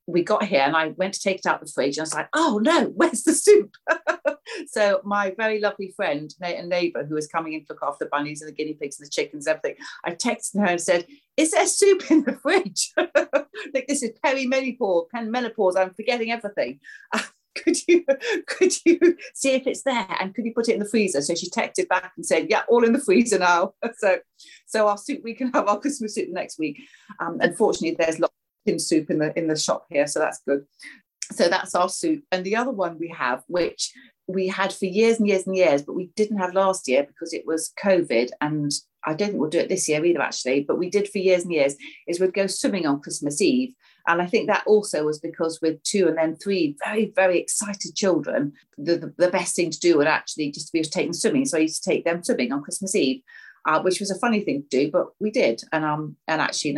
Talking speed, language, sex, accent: 245 wpm, English, female, British